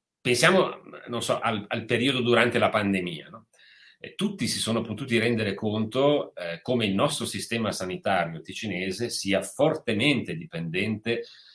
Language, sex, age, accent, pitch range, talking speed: Italian, male, 40-59, native, 95-125 Hz, 135 wpm